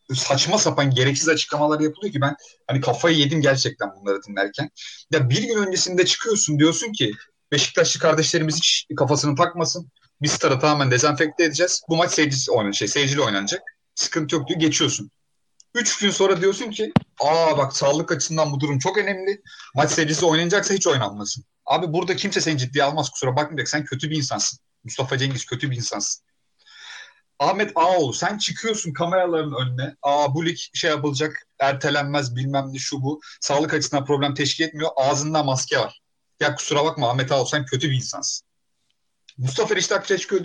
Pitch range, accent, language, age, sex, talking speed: 140-180 Hz, native, Turkish, 40-59, male, 165 wpm